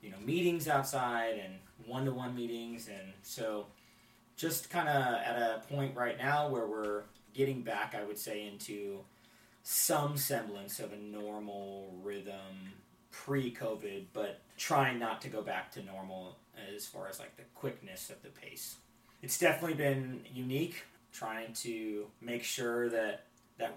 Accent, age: American, 30-49